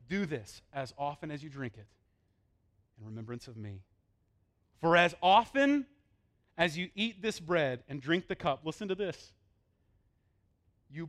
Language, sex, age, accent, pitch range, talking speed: English, male, 30-49, American, 100-150 Hz, 150 wpm